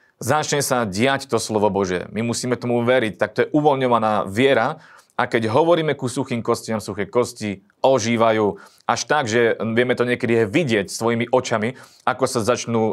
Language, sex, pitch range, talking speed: Slovak, male, 105-135 Hz, 165 wpm